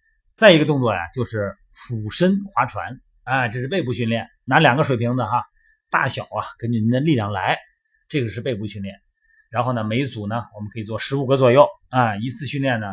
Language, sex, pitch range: Chinese, male, 110-175 Hz